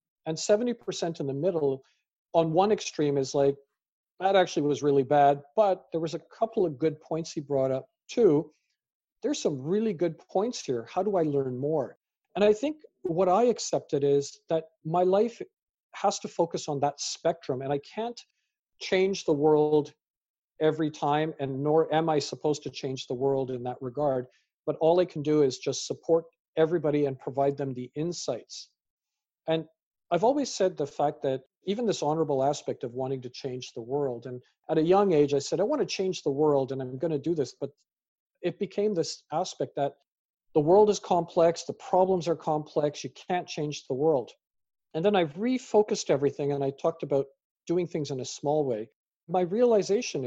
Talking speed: 190 wpm